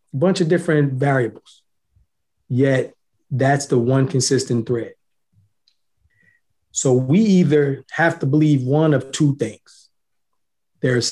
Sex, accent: male, American